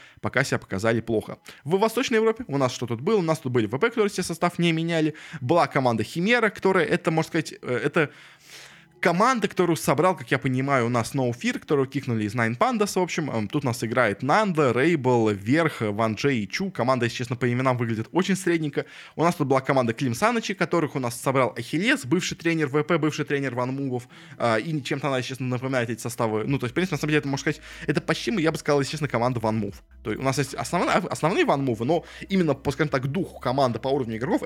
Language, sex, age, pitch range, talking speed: Russian, male, 20-39, 125-175 Hz, 235 wpm